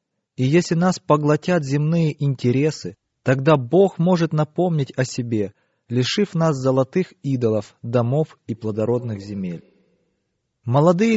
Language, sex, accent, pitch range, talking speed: Russian, male, native, 125-175 Hz, 115 wpm